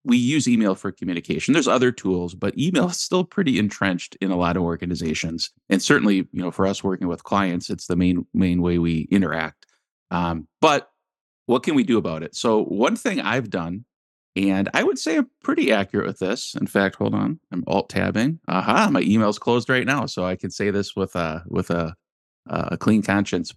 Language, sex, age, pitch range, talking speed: English, male, 30-49, 90-115 Hz, 210 wpm